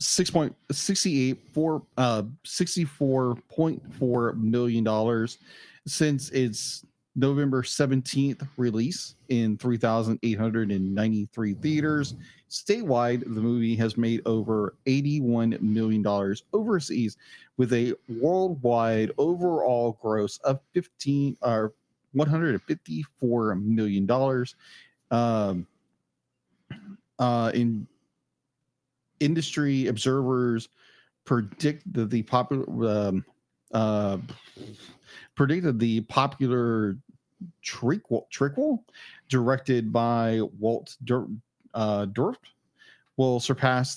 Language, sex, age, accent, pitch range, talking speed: English, male, 40-59, American, 110-140 Hz, 95 wpm